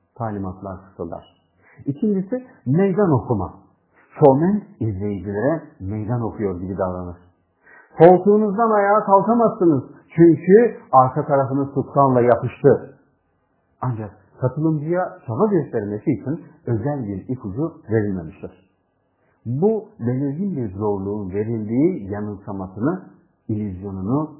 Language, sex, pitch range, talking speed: Turkish, male, 100-160 Hz, 85 wpm